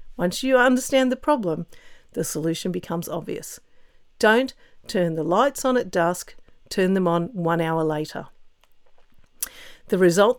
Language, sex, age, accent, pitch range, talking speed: English, female, 50-69, Australian, 175-250 Hz, 140 wpm